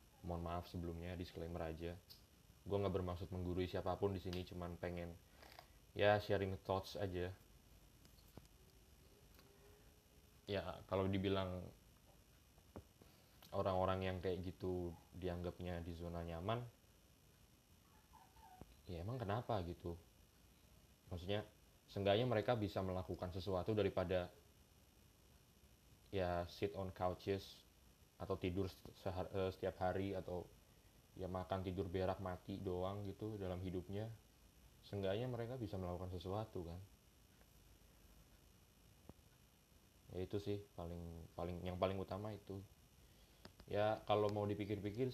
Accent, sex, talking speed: native, male, 100 wpm